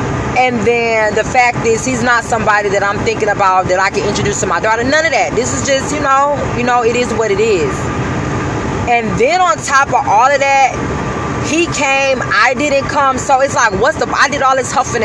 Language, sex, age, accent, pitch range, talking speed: English, female, 20-39, American, 190-245 Hz, 225 wpm